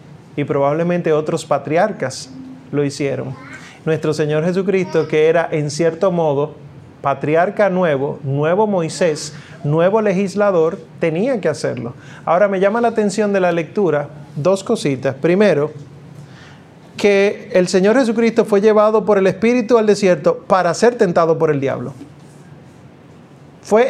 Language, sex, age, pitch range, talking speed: Spanish, male, 30-49, 150-200 Hz, 130 wpm